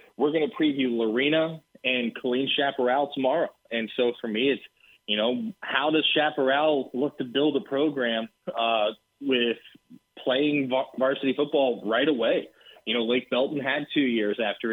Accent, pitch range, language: American, 120-150 Hz, English